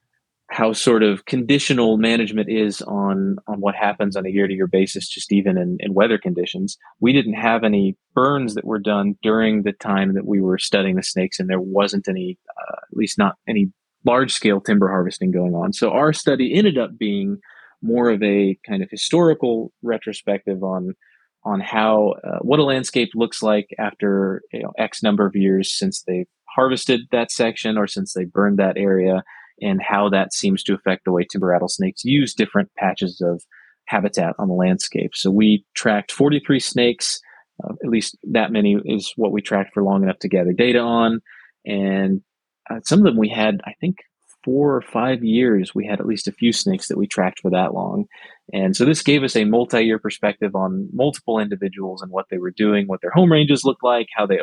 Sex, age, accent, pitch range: male, 20-39, American, 95-120 Hz